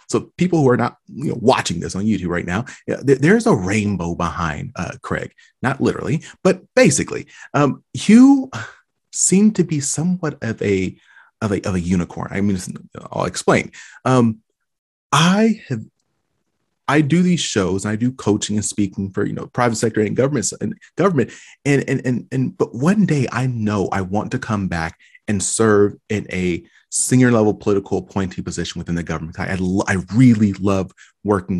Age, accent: 30-49, American